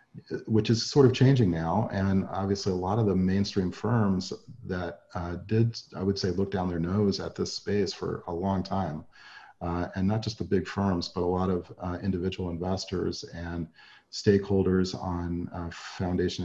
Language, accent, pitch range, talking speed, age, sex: English, American, 90-105 Hz, 180 wpm, 40-59, male